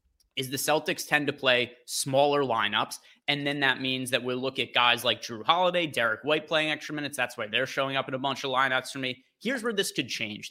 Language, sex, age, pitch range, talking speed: English, male, 30-49, 115-145 Hz, 240 wpm